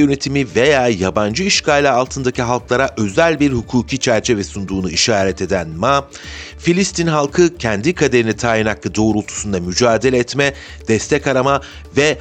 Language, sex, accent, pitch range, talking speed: Turkish, male, native, 100-140 Hz, 130 wpm